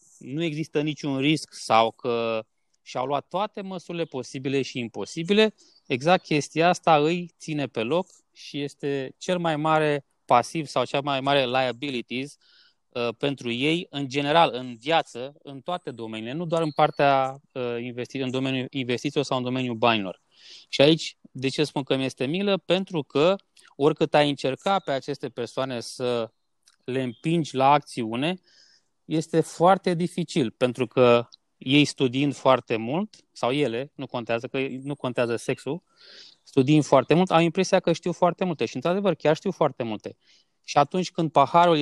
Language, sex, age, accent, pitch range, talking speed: Romanian, male, 20-39, native, 130-165 Hz, 155 wpm